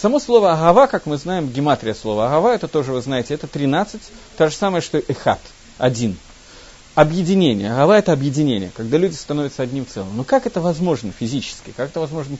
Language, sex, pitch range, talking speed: Russian, male, 125-190 Hz, 190 wpm